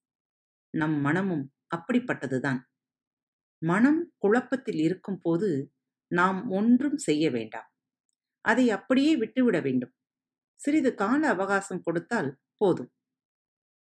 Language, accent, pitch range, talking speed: Tamil, native, 140-220 Hz, 85 wpm